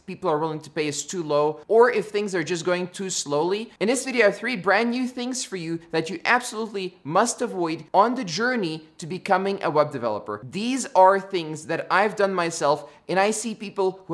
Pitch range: 155-200 Hz